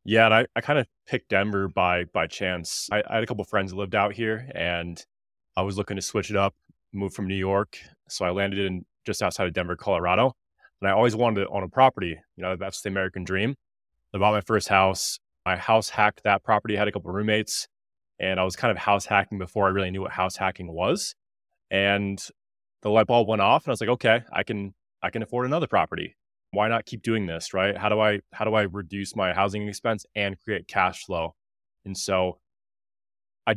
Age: 20-39